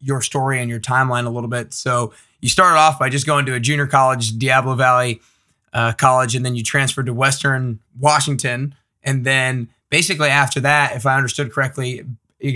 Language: English